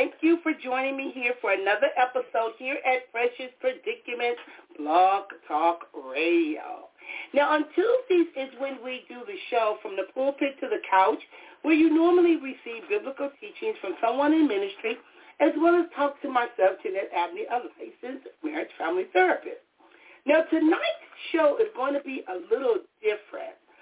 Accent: American